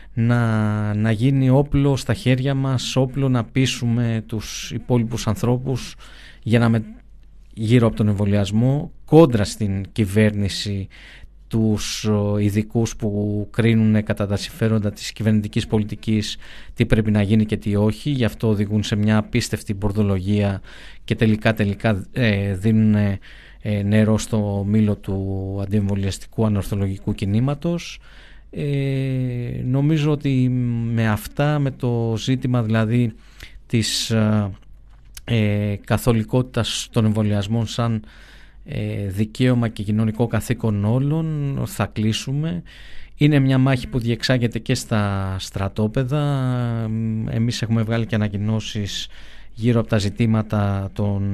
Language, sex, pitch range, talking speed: Greek, male, 105-120 Hz, 115 wpm